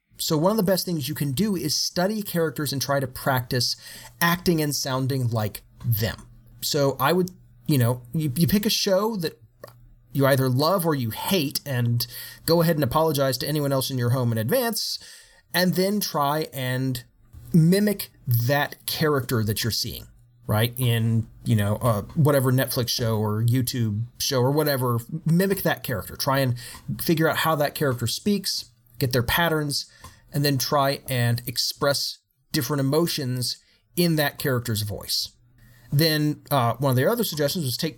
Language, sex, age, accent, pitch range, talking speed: English, male, 30-49, American, 120-155 Hz, 170 wpm